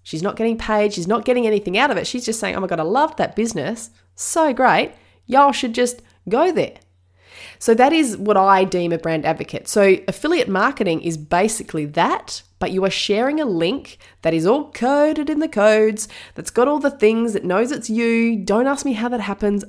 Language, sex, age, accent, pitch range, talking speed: English, female, 20-39, Australian, 160-215 Hz, 215 wpm